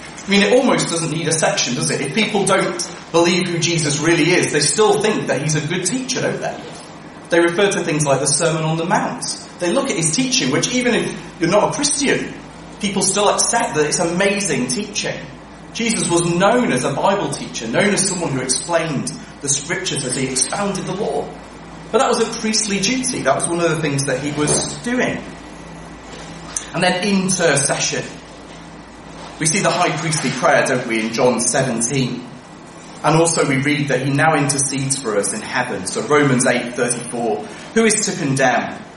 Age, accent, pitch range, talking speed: 30-49, British, 140-200 Hz, 195 wpm